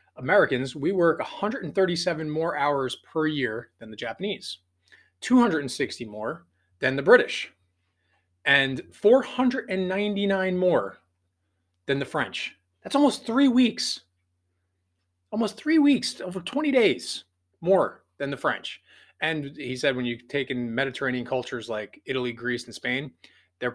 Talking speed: 130 wpm